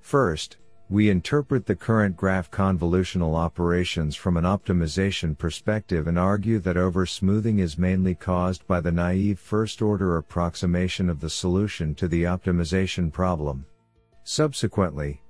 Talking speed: 130 wpm